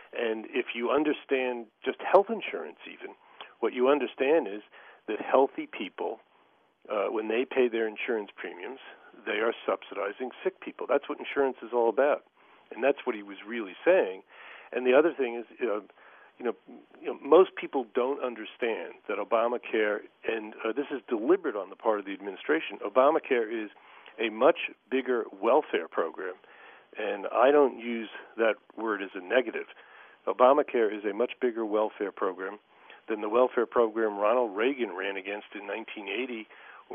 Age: 50-69